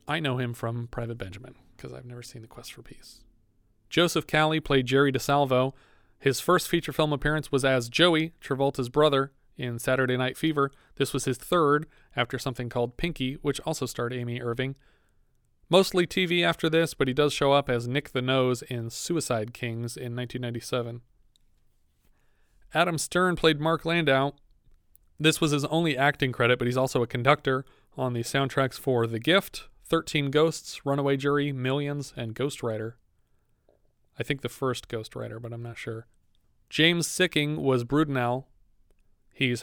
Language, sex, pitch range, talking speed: English, male, 125-150 Hz, 165 wpm